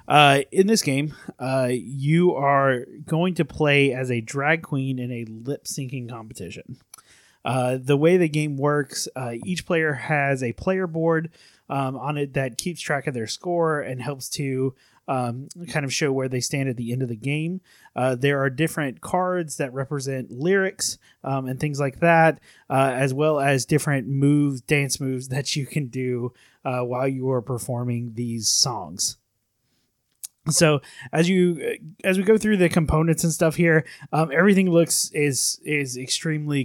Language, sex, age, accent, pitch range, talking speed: English, male, 30-49, American, 130-155 Hz, 175 wpm